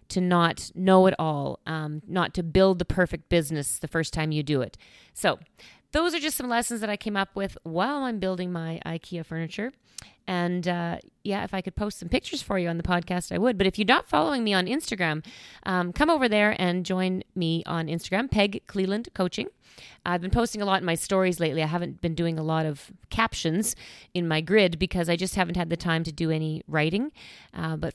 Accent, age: American, 40-59